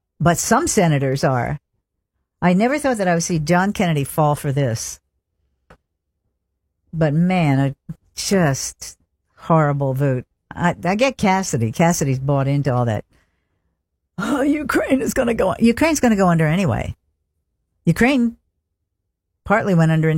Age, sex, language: 60-79, female, English